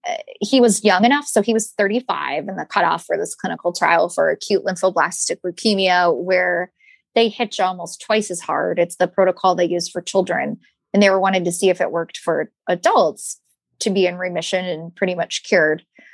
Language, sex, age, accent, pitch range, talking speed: English, female, 20-39, American, 185-235 Hz, 195 wpm